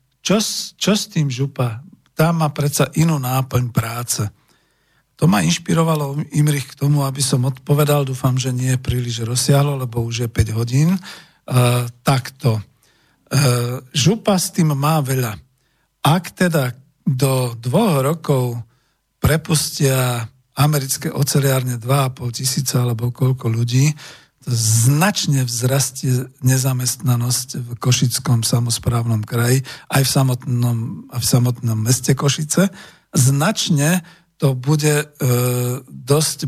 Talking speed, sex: 115 wpm, male